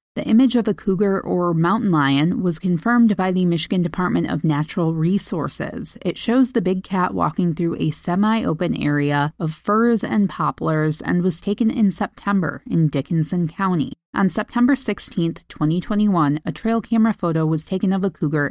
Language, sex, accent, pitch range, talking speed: English, female, American, 160-205 Hz, 170 wpm